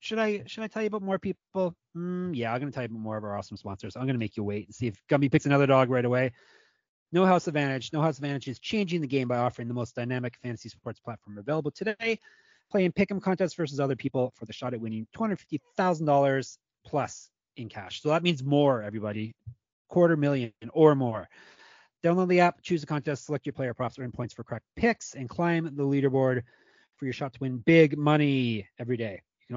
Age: 30-49